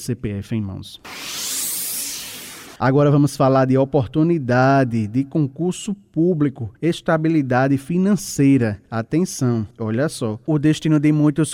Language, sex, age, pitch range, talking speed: Portuguese, male, 20-39, 135-170 Hz, 105 wpm